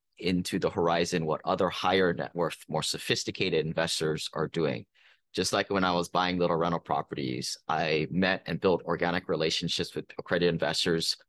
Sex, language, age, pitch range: male, English, 30-49, 90-115 Hz